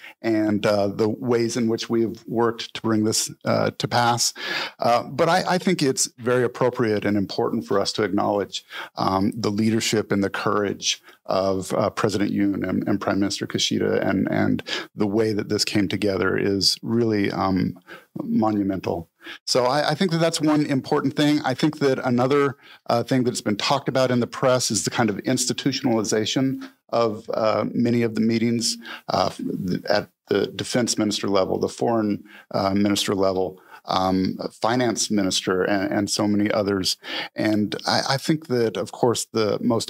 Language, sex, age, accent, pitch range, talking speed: English, male, 50-69, American, 100-125 Hz, 175 wpm